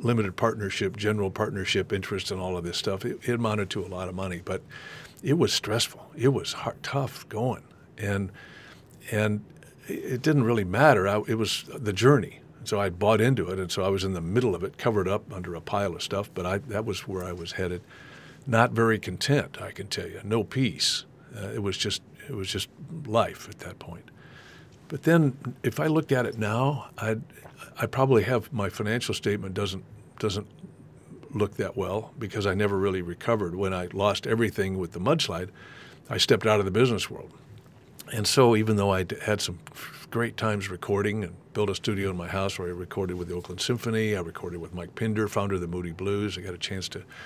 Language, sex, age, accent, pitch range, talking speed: English, male, 60-79, American, 95-115 Hz, 210 wpm